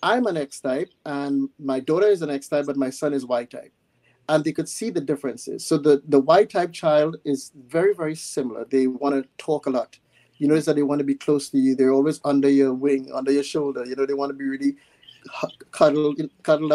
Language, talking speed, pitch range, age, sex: English, 220 wpm, 135-155 Hz, 30-49, male